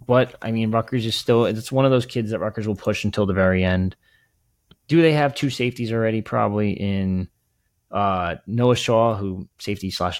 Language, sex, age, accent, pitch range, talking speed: English, male, 20-39, American, 95-115 Hz, 195 wpm